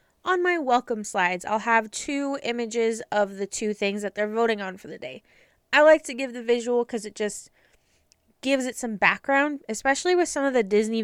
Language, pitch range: English, 210-260 Hz